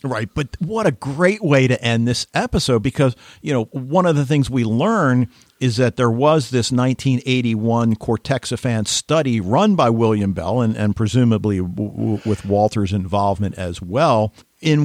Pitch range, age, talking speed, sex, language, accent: 110-135 Hz, 50-69, 170 wpm, male, English, American